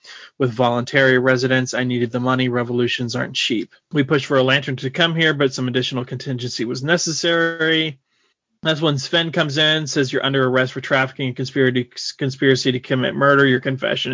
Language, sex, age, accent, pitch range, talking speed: English, male, 20-39, American, 130-145 Hz, 180 wpm